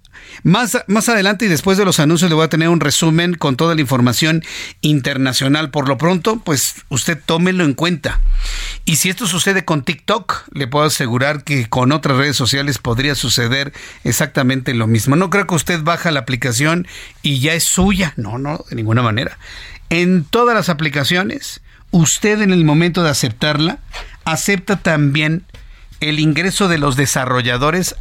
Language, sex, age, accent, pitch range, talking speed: Spanish, male, 50-69, Mexican, 135-175 Hz, 170 wpm